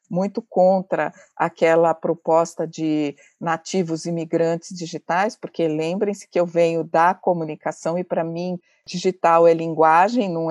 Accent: Brazilian